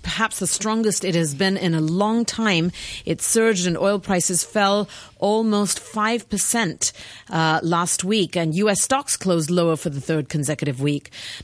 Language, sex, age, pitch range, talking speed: English, female, 40-59, 150-200 Hz, 165 wpm